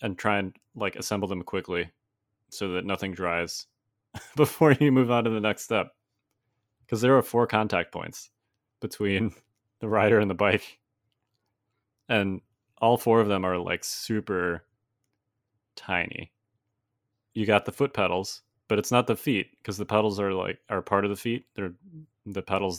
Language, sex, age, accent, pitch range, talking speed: English, male, 30-49, American, 95-115 Hz, 165 wpm